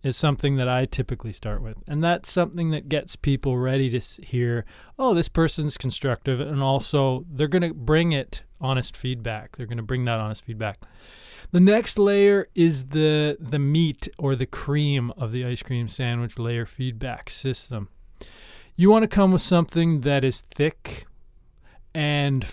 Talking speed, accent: 170 wpm, American